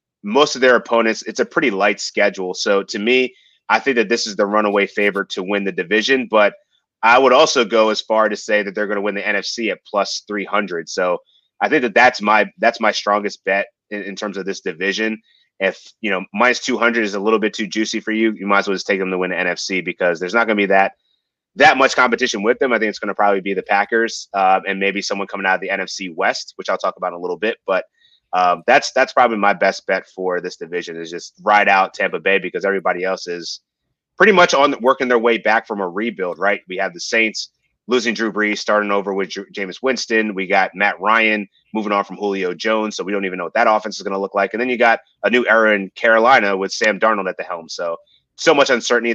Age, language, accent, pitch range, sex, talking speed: 30-49, English, American, 95-110 Hz, male, 255 wpm